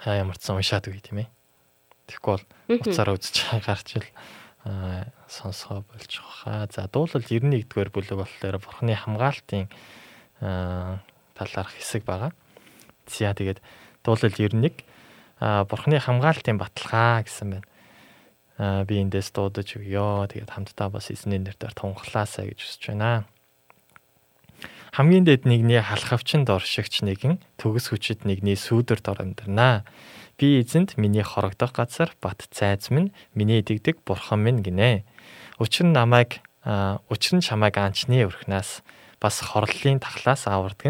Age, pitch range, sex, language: 20-39, 100-125 Hz, male, Korean